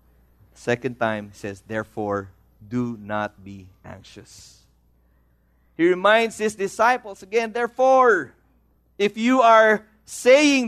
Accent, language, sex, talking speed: Filipino, English, male, 105 wpm